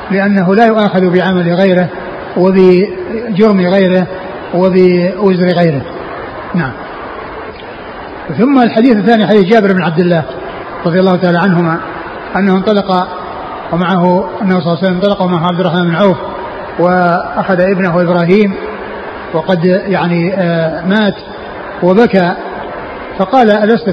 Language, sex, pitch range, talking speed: Arabic, male, 180-200 Hz, 115 wpm